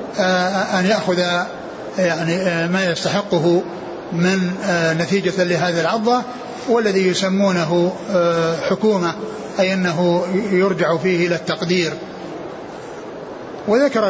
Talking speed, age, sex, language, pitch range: 80 wpm, 60-79, male, Arabic, 175-205 Hz